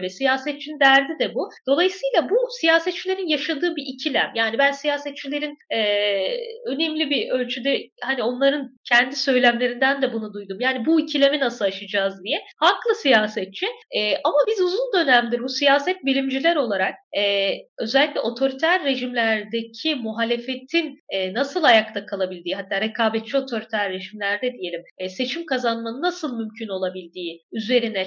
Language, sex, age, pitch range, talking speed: Turkish, female, 10-29, 230-335 Hz, 135 wpm